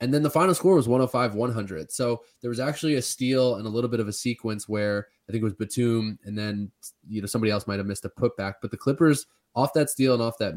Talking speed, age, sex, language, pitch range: 260 wpm, 20-39, male, English, 105-125 Hz